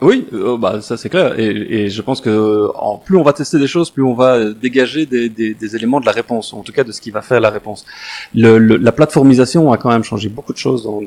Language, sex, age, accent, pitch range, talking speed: French, male, 30-49, French, 115-155 Hz, 275 wpm